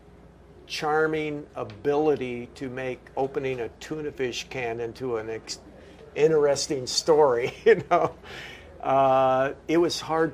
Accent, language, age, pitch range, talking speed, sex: American, English, 50-69, 125-165 Hz, 115 wpm, male